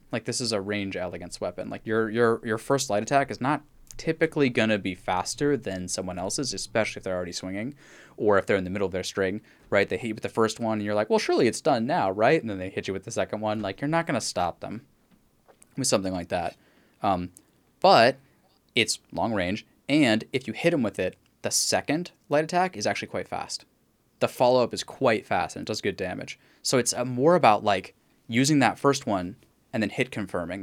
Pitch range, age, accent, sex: 95-135 Hz, 10-29, American, male